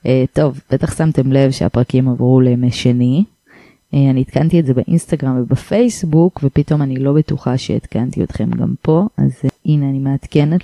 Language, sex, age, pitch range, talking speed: English, female, 20-39, 140-170 Hz, 160 wpm